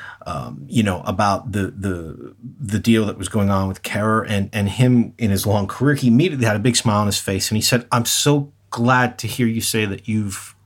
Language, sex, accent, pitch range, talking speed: English, male, American, 100-125 Hz, 235 wpm